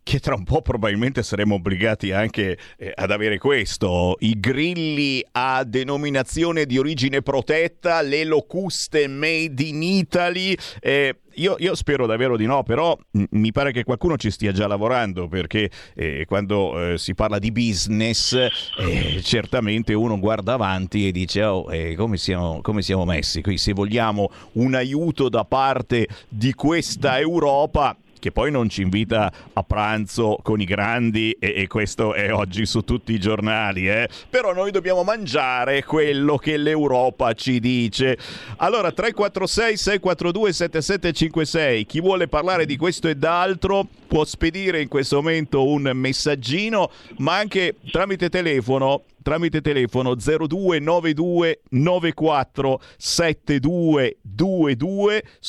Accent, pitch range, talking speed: native, 105-155 Hz, 135 wpm